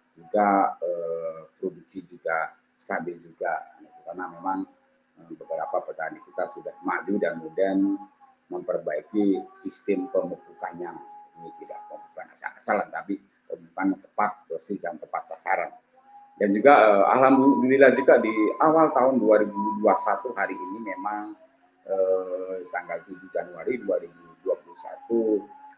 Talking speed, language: 105 wpm, Indonesian